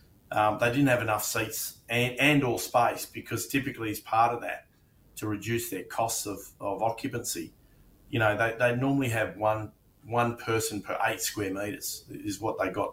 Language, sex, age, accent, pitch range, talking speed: English, male, 30-49, Australian, 100-120 Hz, 185 wpm